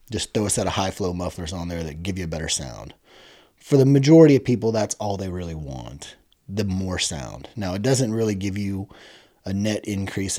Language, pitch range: English, 90-115 Hz